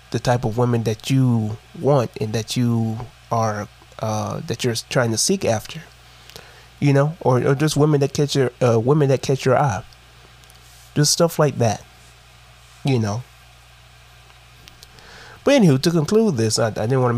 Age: 20-39